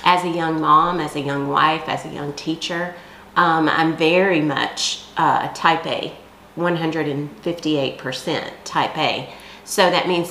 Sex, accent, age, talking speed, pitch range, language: female, American, 40-59, 145 wpm, 150-175 Hz, English